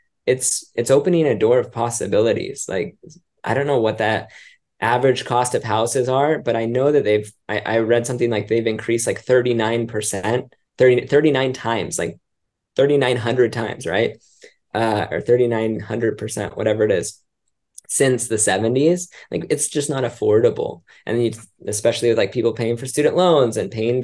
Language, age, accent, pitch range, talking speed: English, 20-39, American, 115-135 Hz, 160 wpm